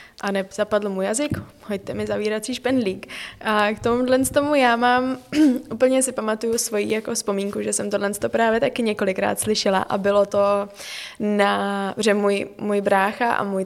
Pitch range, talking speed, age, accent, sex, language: 200-220 Hz, 170 wpm, 20-39, native, female, Czech